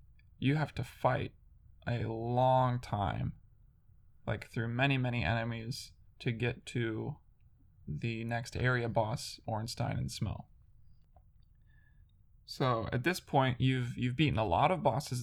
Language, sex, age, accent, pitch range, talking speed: English, male, 20-39, American, 115-135 Hz, 130 wpm